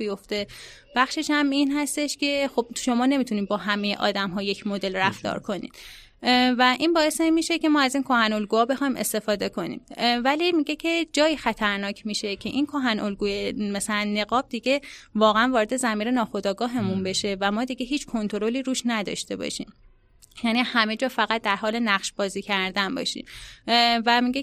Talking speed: 160 wpm